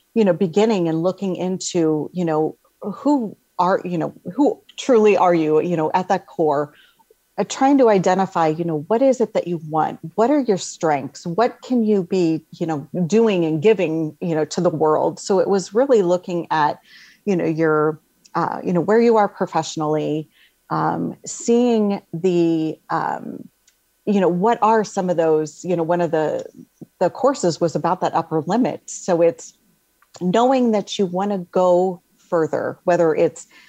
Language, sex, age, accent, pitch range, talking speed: English, female, 40-59, American, 165-210 Hz, 170 wpm